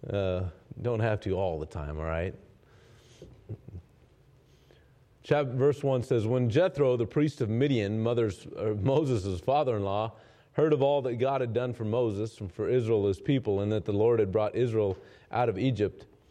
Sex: male